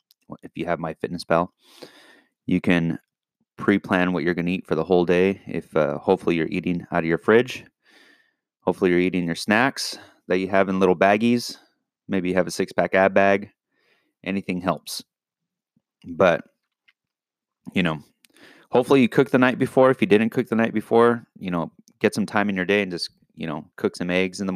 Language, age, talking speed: English, 30-49, 195 wpm